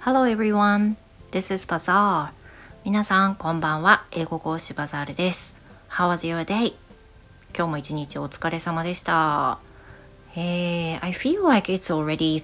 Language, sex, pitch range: Japanese, female, 145-190 Hz